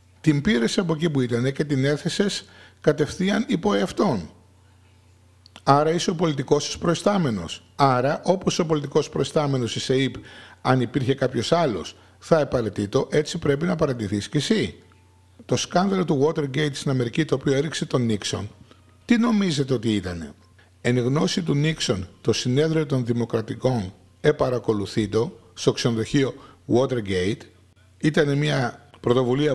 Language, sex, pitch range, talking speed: Greek, male, 105-150 Hz, 130 wpm